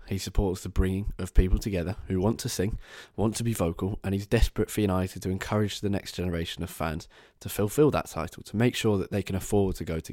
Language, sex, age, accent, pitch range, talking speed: English, male, 20-39, British, 95-115 Hz, 245 wpm